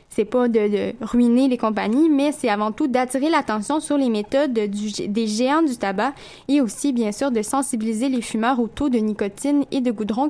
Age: 10-29